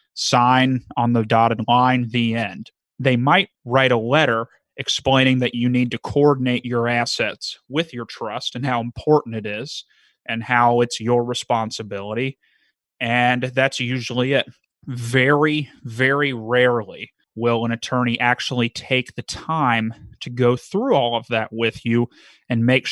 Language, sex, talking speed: English, male, 150 wpm